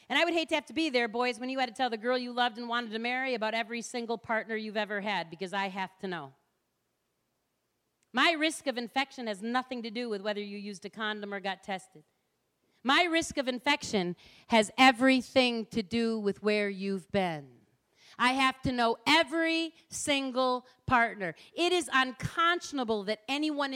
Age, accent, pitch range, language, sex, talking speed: 40-59, American, 225-330 Hz, English, female, 190 wpm